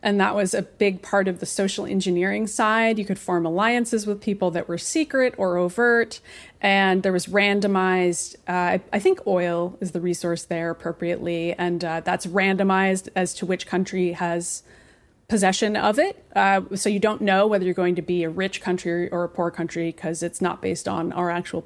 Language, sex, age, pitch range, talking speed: English, female, 30-49, 180-210 Hz, 195 wpm